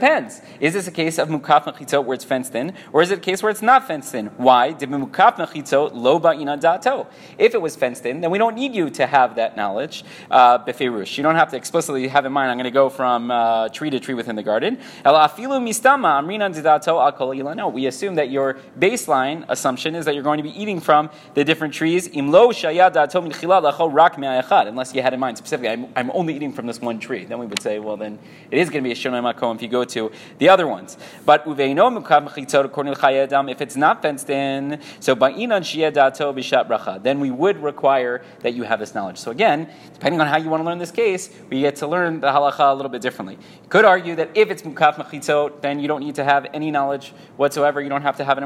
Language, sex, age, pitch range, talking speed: English, male, 30-49, 135-170 Hz, 205 wpm